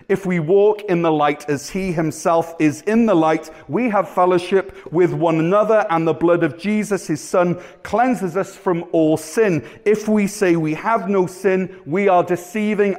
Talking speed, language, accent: 190 wpm, English, British